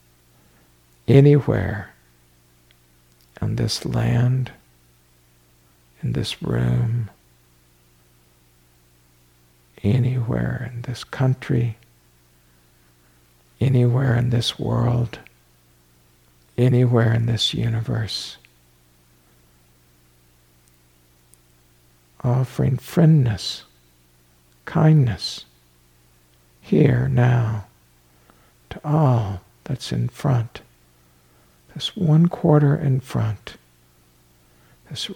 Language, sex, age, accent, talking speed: English, male, 60-79, American, 60 wpm